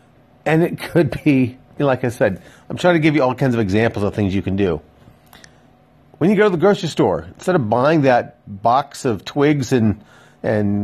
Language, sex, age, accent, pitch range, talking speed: English, male, 40-59, American, 110-150 Hz, 205 wpm